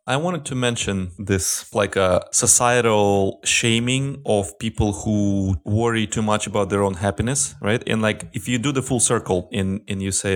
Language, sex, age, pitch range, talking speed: English, male, 30-49, 95-120 Hz, 195 wpm